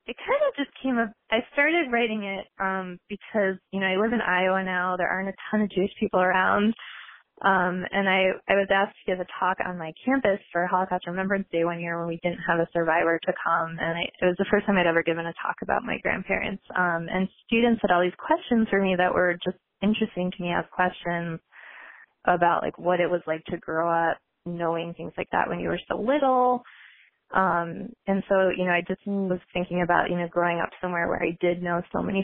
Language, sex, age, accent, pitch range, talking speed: English, female, 20-39, American, 175-200 Hz, 235 wpm